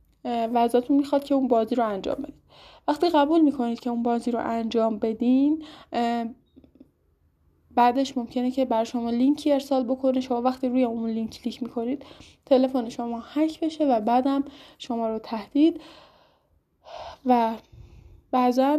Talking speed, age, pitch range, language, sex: 135 wpm, 10-29, 225-275 Hz, Persian, female